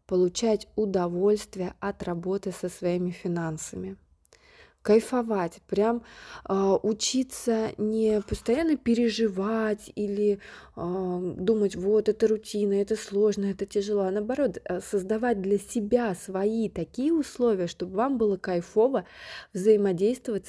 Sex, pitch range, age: female, 185-225 Hz, 20-39